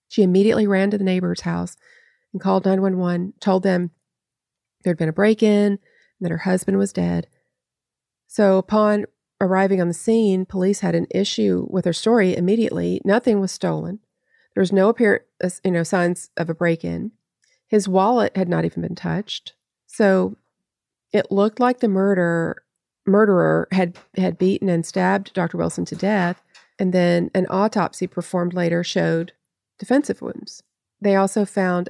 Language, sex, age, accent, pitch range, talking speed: English, female, 40-59, American, 175-205 Hz, 160 wpm